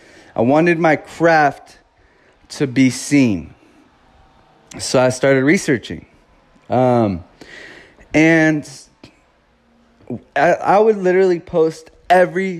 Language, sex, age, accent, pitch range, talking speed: English, male, 20-39, American, 125-165 Hz, 90 wpm